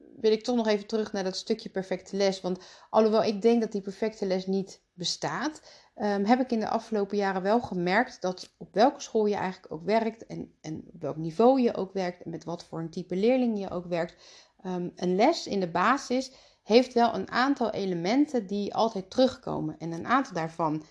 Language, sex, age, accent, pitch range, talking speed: Dutch, female, 40-59, Dutch, 175-220 Hz, 205 wpm